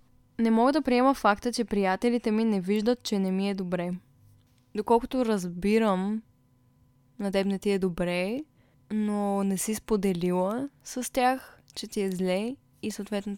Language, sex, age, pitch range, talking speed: Bulgarian, female, 20-39, 185-215 Hz, 150 wpm